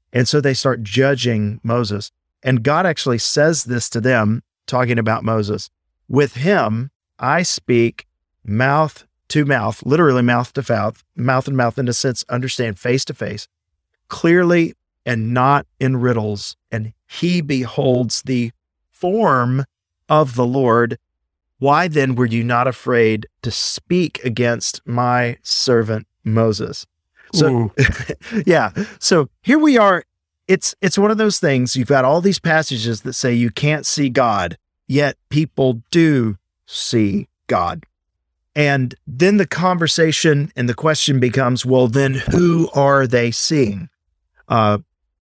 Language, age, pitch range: English, 40-59, 115-145 Hz